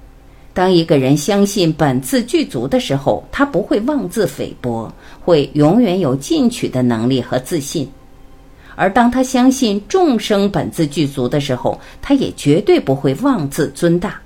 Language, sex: Chinese, female